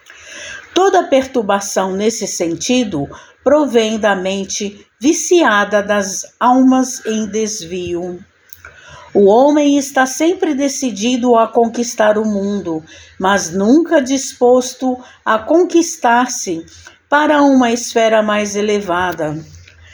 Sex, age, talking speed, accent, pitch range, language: female, 60-79, 95 wpm, Brazilian, 205-270 Hz, Portuguese